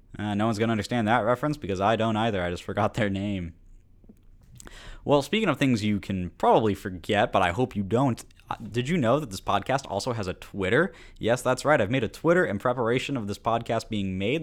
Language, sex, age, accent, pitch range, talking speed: English, male, 20-39, American, 95-120 Hz, 230 wpm